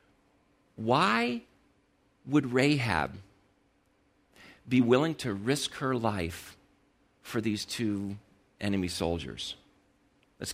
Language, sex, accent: English, male, American